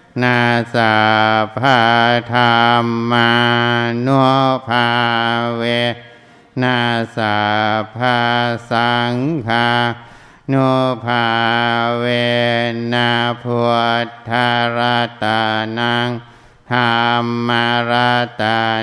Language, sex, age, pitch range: Thai, male, 60-79, 115-120 Hz